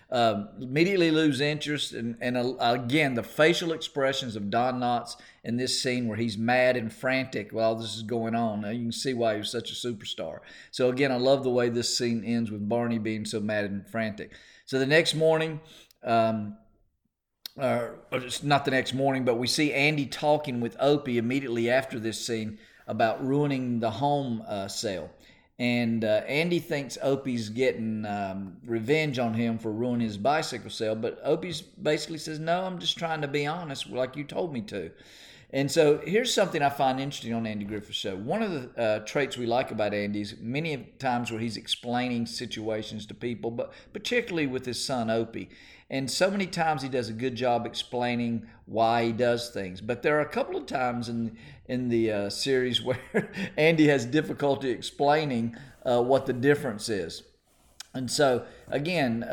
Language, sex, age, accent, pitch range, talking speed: English, male, 40-59, American, 115-145 Hz, 190 wpm